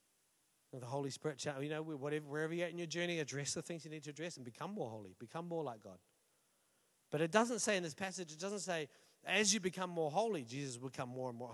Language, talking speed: English, 250 wpm